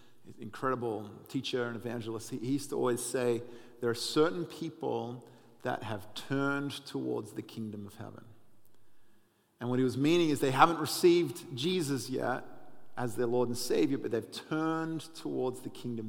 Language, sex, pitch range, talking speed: English, male, 115-130 Hz, 160 wpm